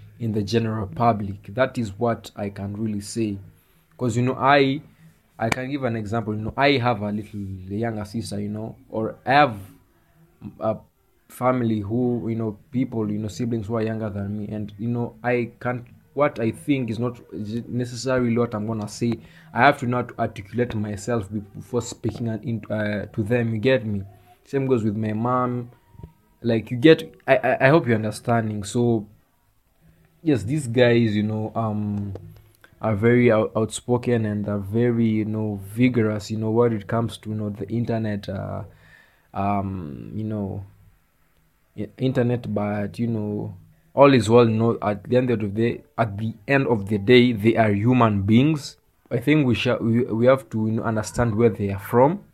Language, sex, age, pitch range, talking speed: English, male, 20-39, 105-120 Hz, 180 wpm